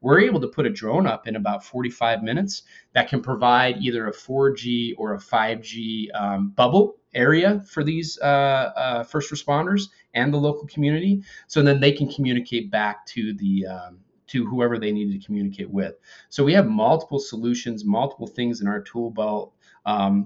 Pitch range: 105-140 Hz